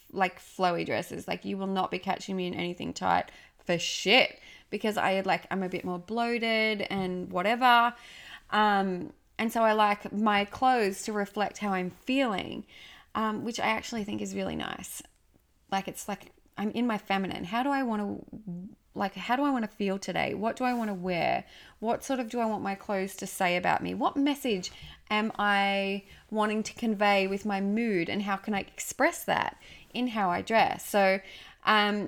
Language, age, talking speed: English, 20-39, 195 wpm